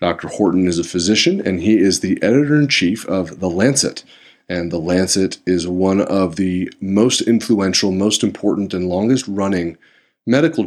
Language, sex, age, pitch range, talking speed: English, male, 30-49, 95-115 Hz, 150 wpm